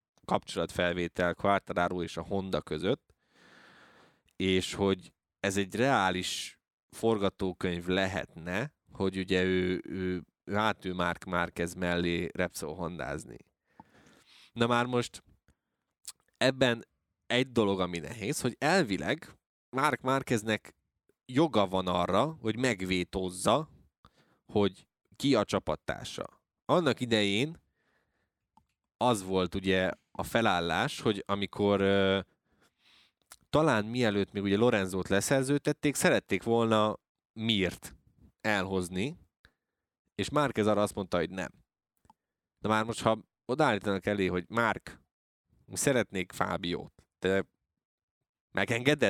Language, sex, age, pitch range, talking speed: Hungarian, male, 20-39, 95-120 Hz, 105 wpm